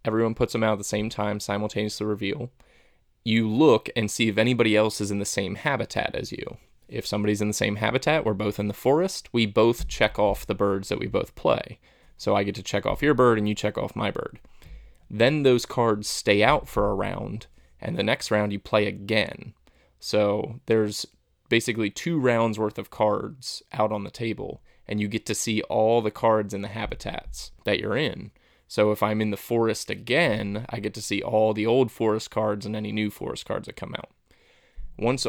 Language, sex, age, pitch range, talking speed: English, male, 20-39, 105-120 Hz, 215 wpm